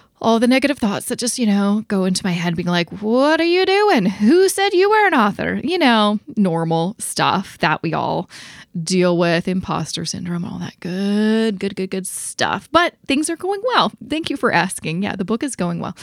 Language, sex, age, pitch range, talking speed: English, female, 20-39, 180-235 Hz, 215 wpm